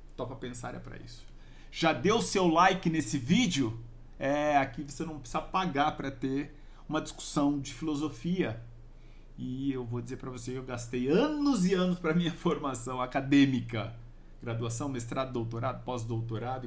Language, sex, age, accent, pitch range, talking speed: English, male, 50-69, Brazilian, 120-155 Hz, 160 wpm